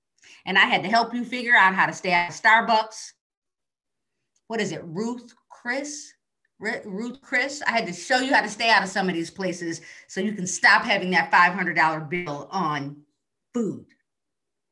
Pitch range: 185-245 Hz